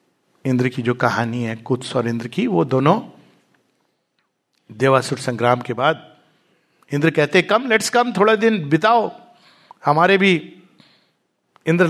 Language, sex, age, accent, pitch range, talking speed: English, male, 60-79, Indian, 145-225 Hz, 130 wpm